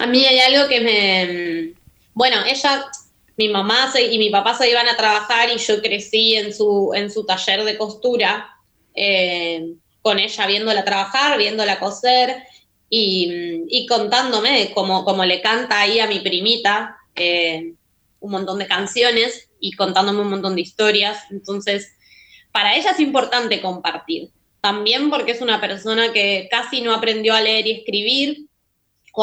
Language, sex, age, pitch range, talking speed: Spanish, female, 20-39, 200-235 Hz, 155 wpm